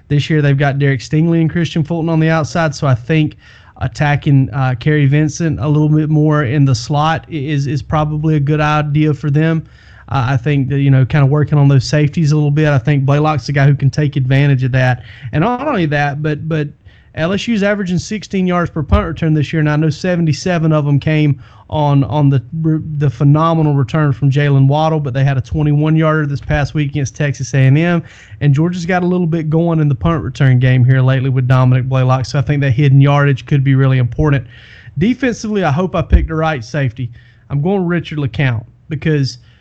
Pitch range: 135-160 Hz